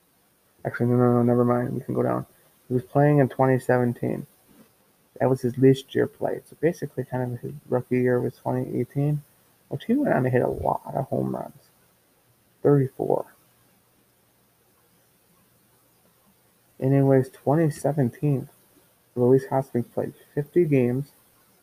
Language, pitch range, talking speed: English, 125-140 Hz, 135 wpm